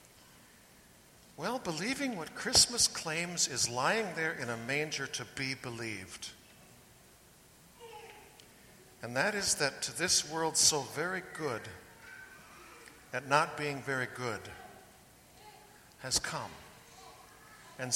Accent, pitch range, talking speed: American, 120-150 Hz, 105 wpm